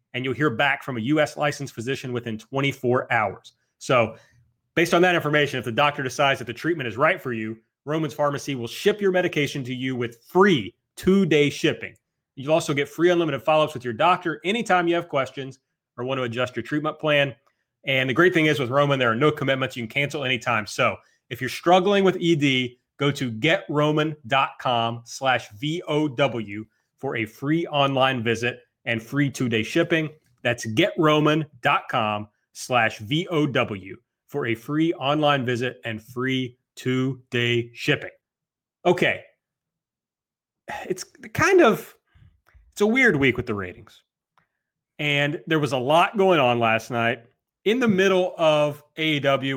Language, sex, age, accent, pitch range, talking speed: English, male, 30-49, American, 120-150 Hz, 160 wpm